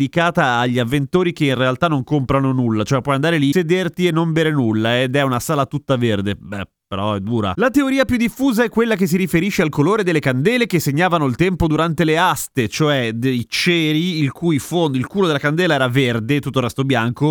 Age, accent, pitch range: 30-49, native, 125-170 Hz